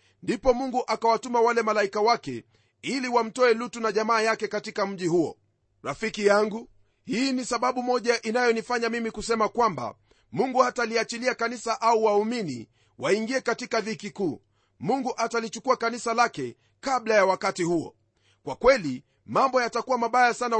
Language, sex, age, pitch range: Swahili, male, 40-59, 195-240 Hz